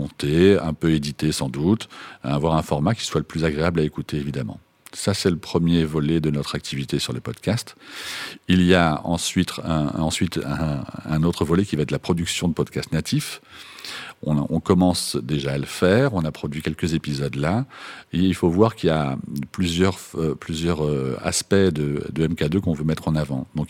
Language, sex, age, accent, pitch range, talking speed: French, male, 50-69, French, 70-85 Hz, 200 wpm